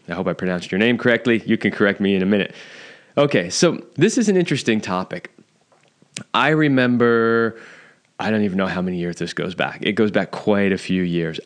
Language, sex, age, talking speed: English, male, 20-39, 210 wpm